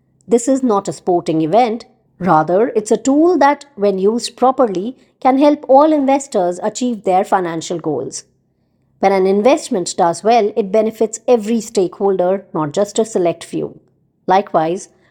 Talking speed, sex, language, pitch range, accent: 145 wpm, male, English, 180-235 Hz, Indian